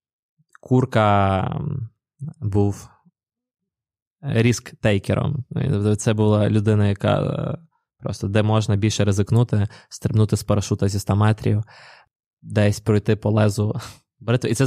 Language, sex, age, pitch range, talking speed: Ukrainian, male, 20-39, 105-120 Hz, 100 wpm